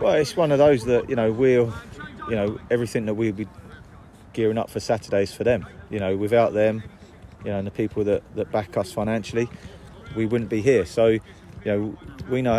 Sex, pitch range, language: male, 105-115 Hz, English